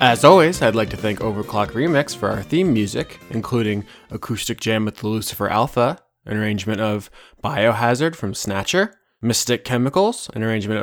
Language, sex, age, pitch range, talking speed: English, male, 20-39, 110-130 Hz, 160 wpm